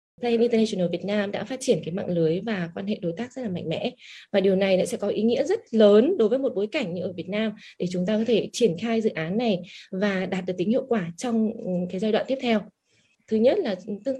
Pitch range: 185-240 Hz